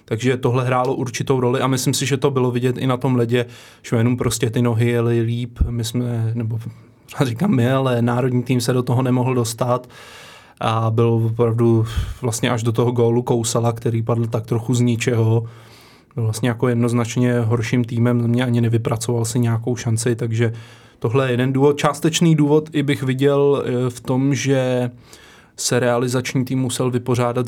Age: 20-39